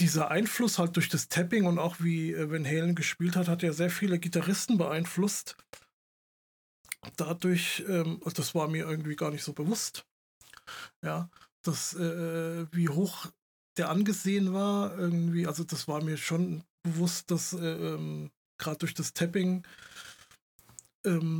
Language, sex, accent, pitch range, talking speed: German, male, German, 155-180 Hz, 145 wpm